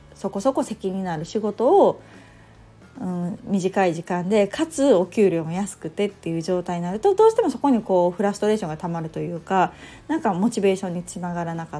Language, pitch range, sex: Japanese, 175-230 Hz, female